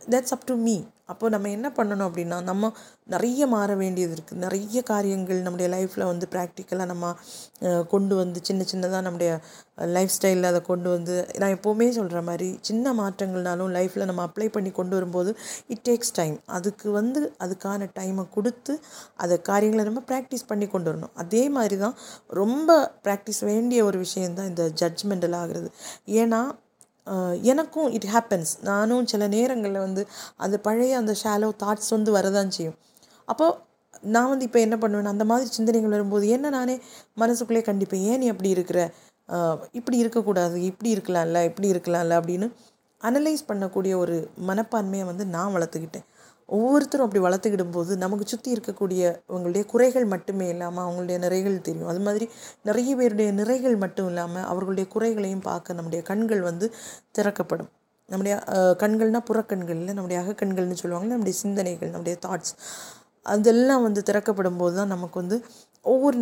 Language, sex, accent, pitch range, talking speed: Tamil, female, native, 180-225 Hz, 150 wpm